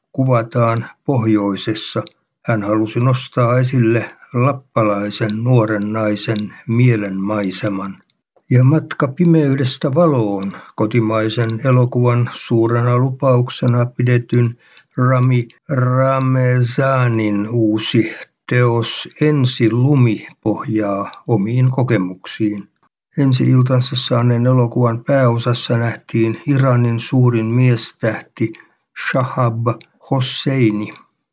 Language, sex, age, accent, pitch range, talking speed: Finnish, male, 60-79, native, 110-130 Hz, 75 wpm